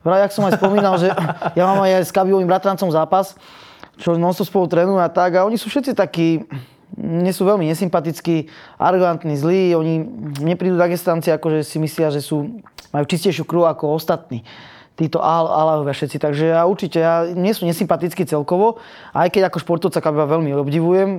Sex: male